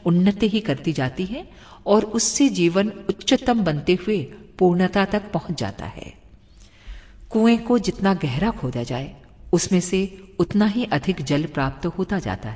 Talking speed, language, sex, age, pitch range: 150 wpm, Hindi, female, 50-69, 150-210 Hz